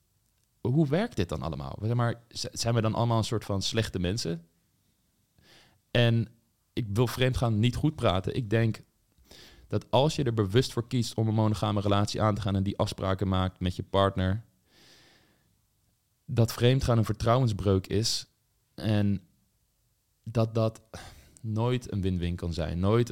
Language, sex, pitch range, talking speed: Dutch, male, 95-115 Hz, 160 wpm